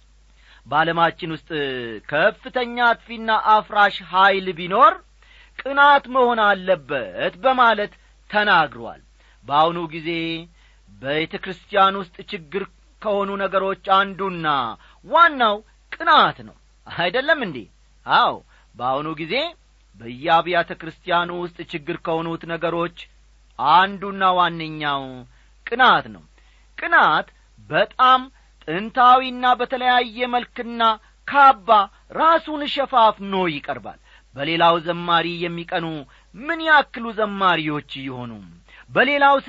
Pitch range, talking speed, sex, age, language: 165-235 Hz, 85 wpm, male, 40-59, Amharic